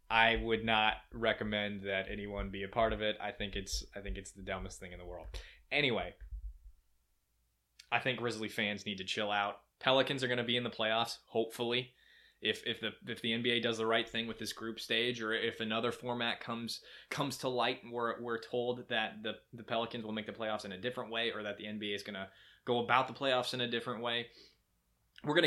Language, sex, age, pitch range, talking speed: English, male, 20-39, 105-125 Hz, 225 wpm